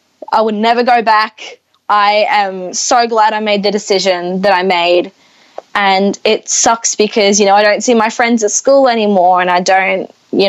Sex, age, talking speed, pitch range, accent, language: female, 10-29, 195 wpm, 185-225 Hz, Australian, English